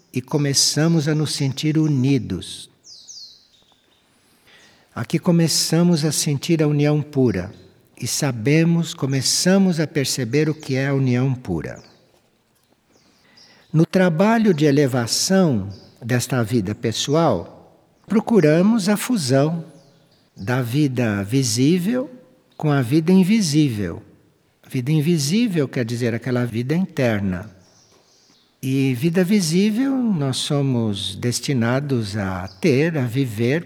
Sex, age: male, 60-79